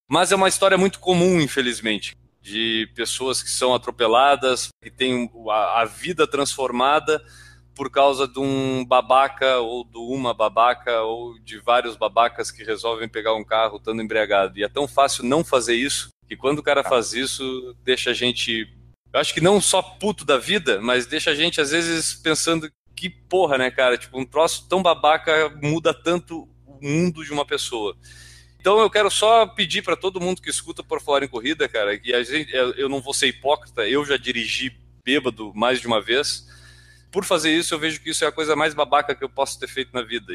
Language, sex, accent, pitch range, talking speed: Portuguese, male, Brazilian, 115-150 Hz, 195 wpm